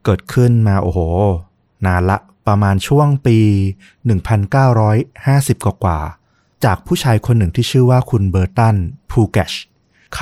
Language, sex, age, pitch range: Thai, male, 20-39, 95-125 Hz